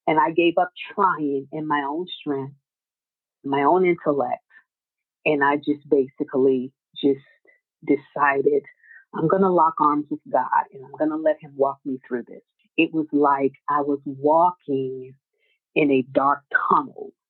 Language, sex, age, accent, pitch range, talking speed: English, female, 40-59, American, 145-190 Hz, 155 wpm